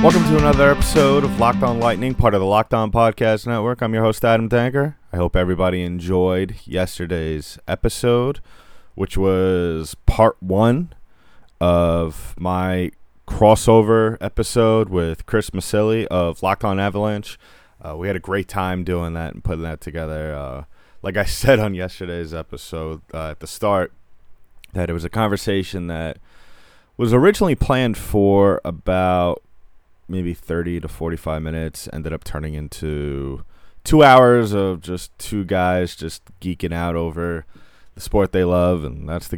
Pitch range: 80-100 Hz